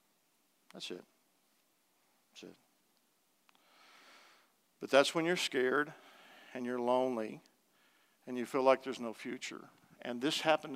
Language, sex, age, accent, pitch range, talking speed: English, male, 50-69, American, 120-145 Hz, 125 wpm